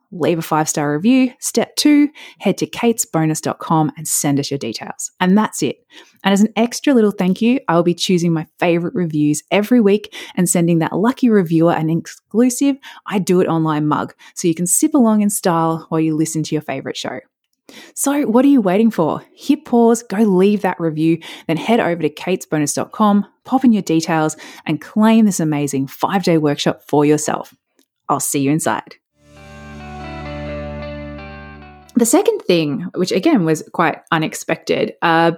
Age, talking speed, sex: 20-39, 170 wpm, female